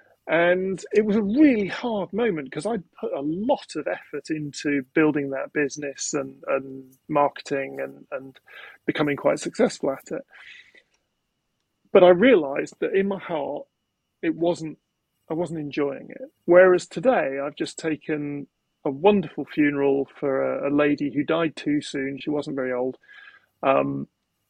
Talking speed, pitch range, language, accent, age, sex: 155 wpm, 140-185 Hz, English, British, 30-49, male